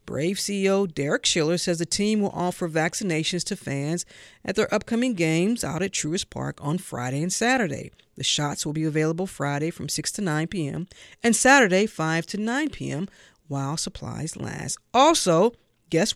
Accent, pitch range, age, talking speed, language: American, 155-210 Hz, 50-69, 170 wpm, English